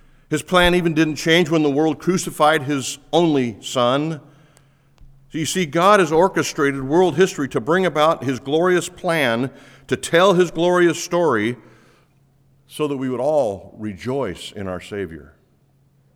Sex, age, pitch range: male, 50-69, 125-165 Hz